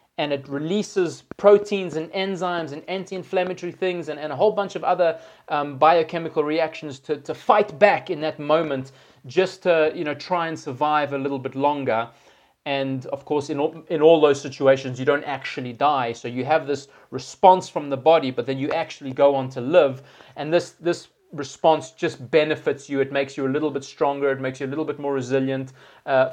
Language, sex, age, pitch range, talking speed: English, male, 30-49, 135-165 Hz, 205 wpm